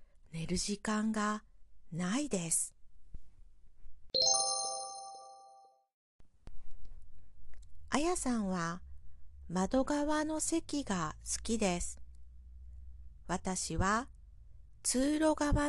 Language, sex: Japanese, female